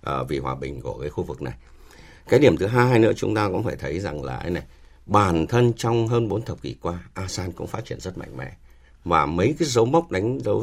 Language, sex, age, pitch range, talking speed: Vietnamese, male, 60-79, 65-105 Hz, 250 wpm